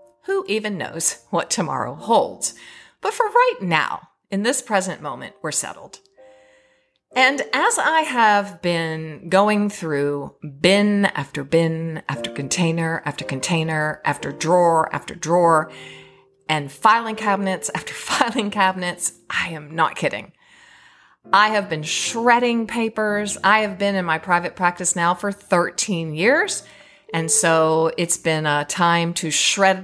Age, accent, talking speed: 50-69, American, 135 wpm